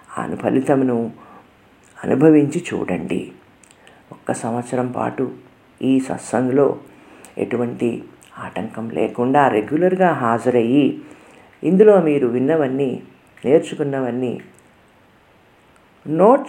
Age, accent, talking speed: 50-69, native, 70 wpm